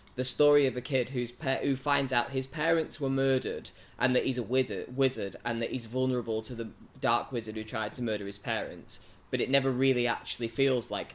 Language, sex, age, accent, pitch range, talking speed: English, male, 10-29, British, 110-130 Hz, 220 wpm